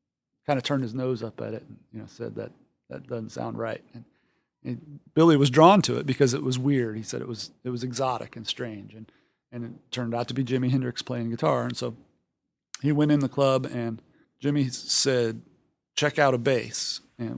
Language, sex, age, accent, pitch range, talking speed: English, male, 40-59, American, 110-130 Hz, 220 wpm